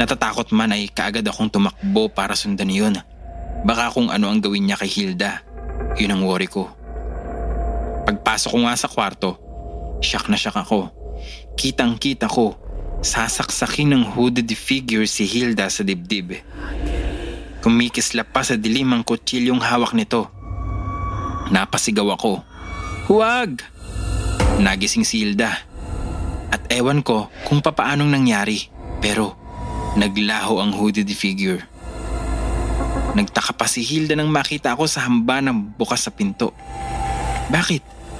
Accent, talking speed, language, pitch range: Filipino, 125 wpm, English, 90-145 Hz